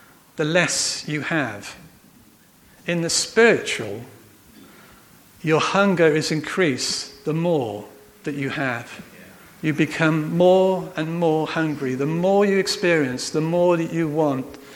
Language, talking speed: English, 125 wpm